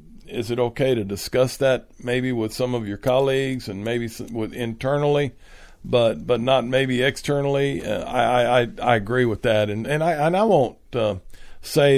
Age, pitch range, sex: 50-69, 105-125 Hz, male